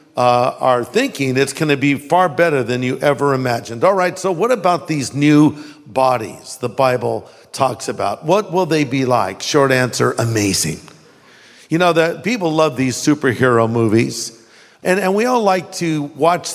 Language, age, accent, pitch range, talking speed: English, 50-69, American, 140-200 Hz, 175 wpm